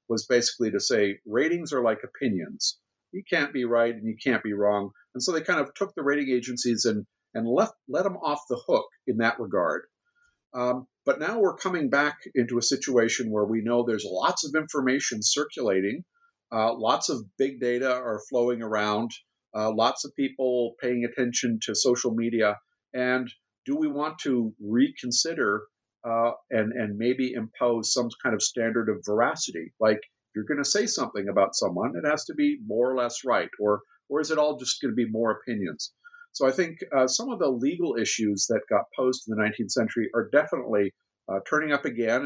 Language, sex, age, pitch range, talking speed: English, male, 50-69, 110-135 Hz, 195 wpm